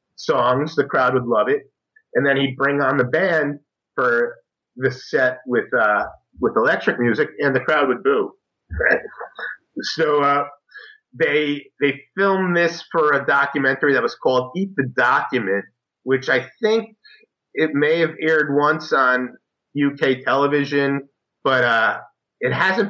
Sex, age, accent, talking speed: male, 30-49, American, 145 wpm